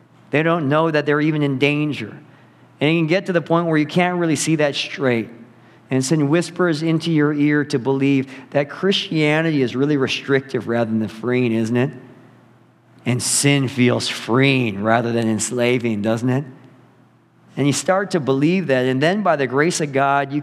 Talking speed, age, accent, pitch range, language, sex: 185 wpm, 50-69, American, 135-165 Hz, English, male